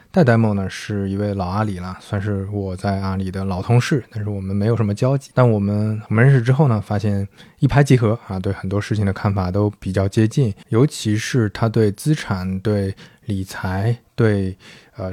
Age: 20-39